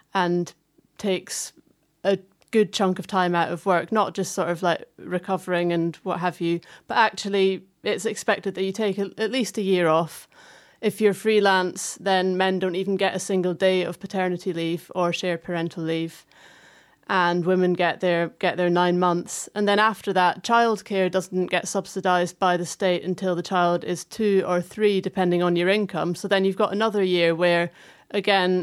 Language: English